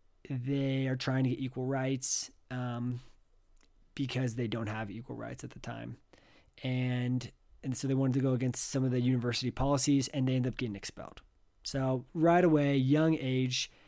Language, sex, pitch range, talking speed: English, male, 120-140 Hz, 175 wpm